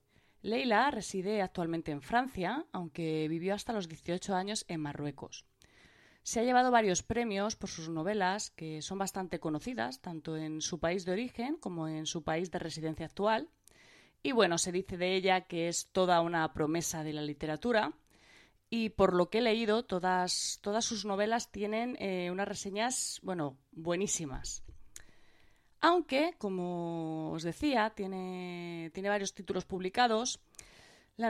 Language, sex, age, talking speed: Spanish, female, 20-39, 150 wpm